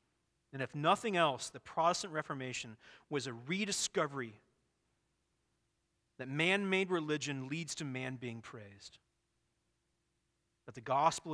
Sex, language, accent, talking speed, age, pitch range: male, English, American, 110 wpm, 40-59, 110-145 Hz